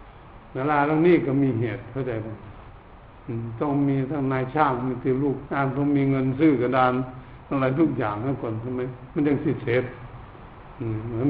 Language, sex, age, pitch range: Thai, male, 60-79, 115-140 Hz